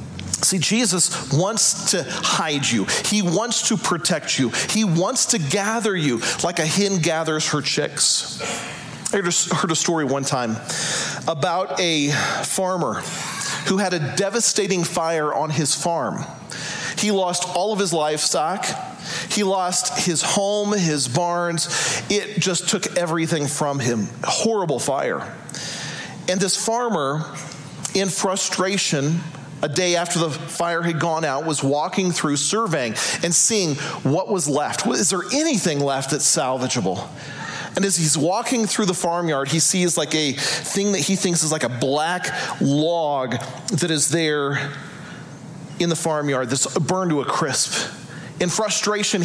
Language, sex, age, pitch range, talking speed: English, male, 40-59, 155-190 Hz, 150 wpm